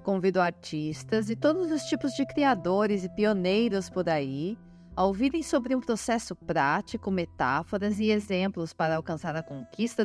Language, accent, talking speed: Portuguese, Brazilian, 150 wpm